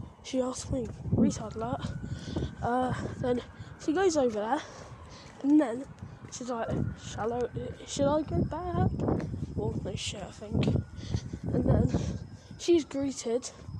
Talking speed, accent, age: 130 wpm, British, 10-29